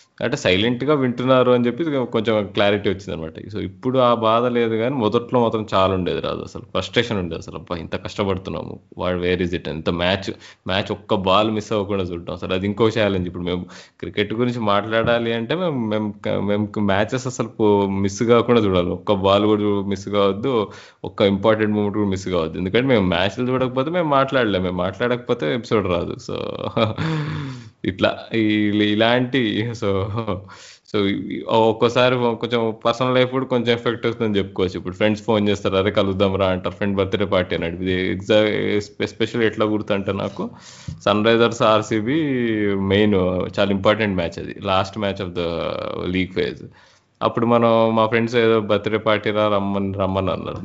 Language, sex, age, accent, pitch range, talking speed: Telugu, male, 20-39, native, 95-115 Hz, 160 wpm